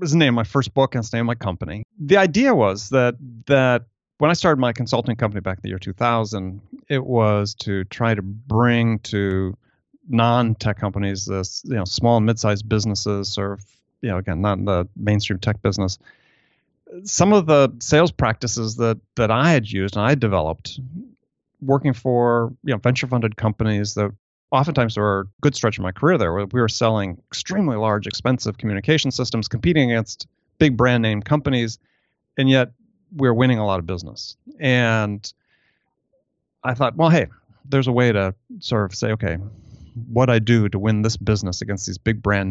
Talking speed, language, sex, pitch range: 190 wpm, English, male, 100-125 Hz